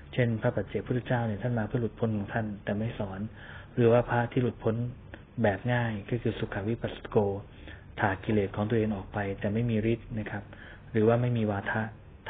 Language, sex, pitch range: Thai, male, 100-115 Hz